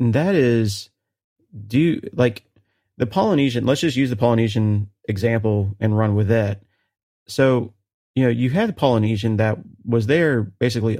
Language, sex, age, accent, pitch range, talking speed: English, male, 30-49, American, 105-125 Hz, 160 wpm